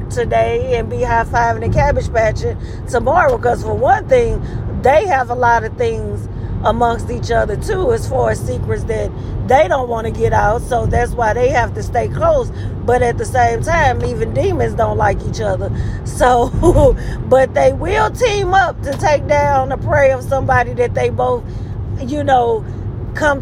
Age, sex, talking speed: 40-59, female, 180 wpm